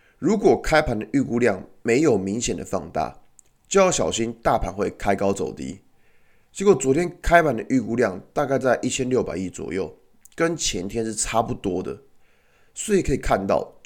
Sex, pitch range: male, 110-155 Hz